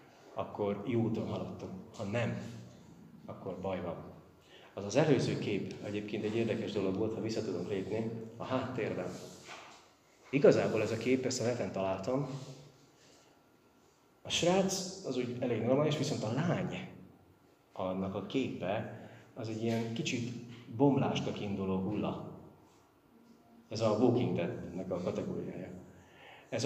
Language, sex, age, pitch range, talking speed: Hungarian, male, 30-49, 105-125 Hz, 125 wpm